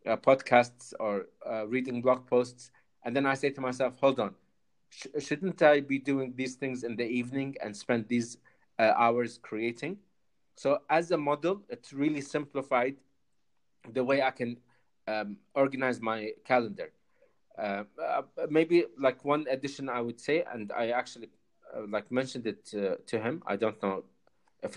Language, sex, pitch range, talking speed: English, male, 120-140 Hz, 165 wpm